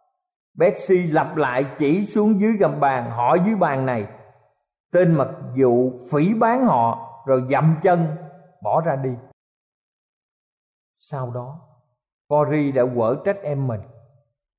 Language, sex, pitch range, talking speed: Vietnamese, male, 140-200 Hz, 130 wpm